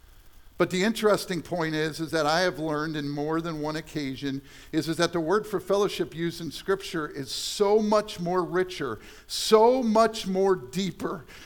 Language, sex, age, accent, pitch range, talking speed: English, male, 50-69, American, 130-190 Hz, 180 wpm